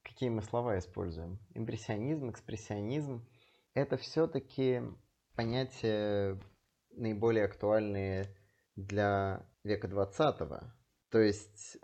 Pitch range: 100-120 Hz